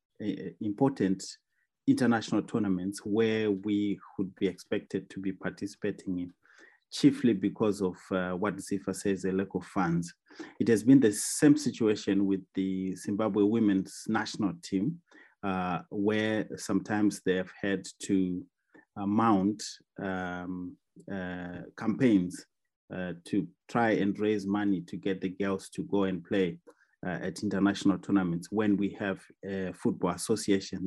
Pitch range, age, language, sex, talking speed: 95-105 Hz, 30-49, English, male, 140 wpm